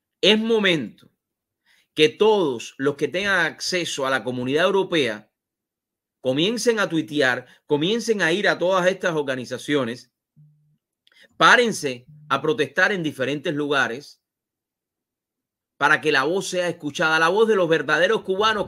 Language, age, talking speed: English, 30-49, 130 wpm